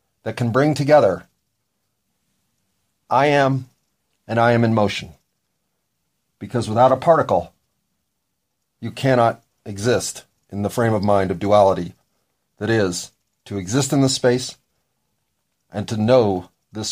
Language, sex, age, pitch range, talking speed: English, male, 40-59, 100-130 Hz, 130 wpm